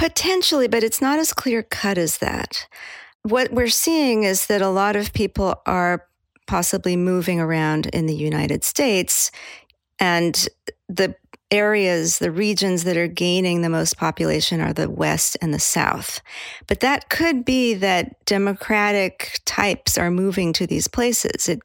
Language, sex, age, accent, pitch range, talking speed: English, female, 40-59, American, 170-210 Hz, 155 wpm